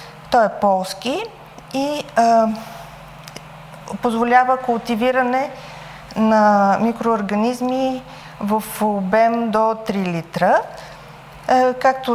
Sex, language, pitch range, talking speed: female, Bulgarian, 185-230 Hz, 70 wpm